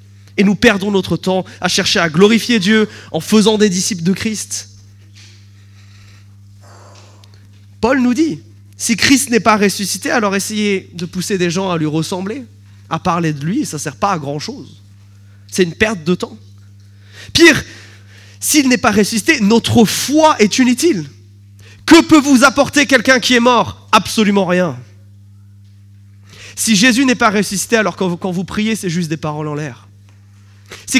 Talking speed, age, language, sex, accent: 165 wpm, 20-39, French, male, French